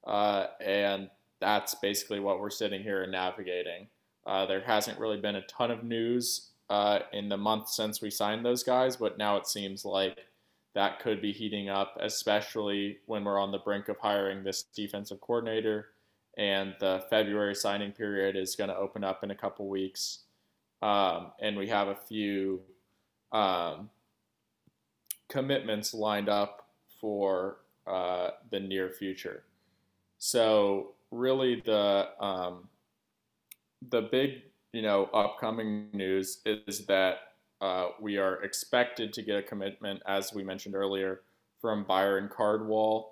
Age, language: 20-39, English